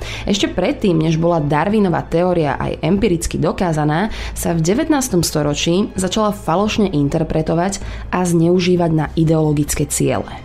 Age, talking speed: 20-39, 120 wpm